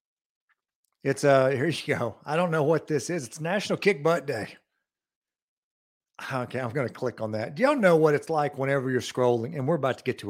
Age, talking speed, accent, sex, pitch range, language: 50-69, 220 wpm, American, male, 130-170 Hz, English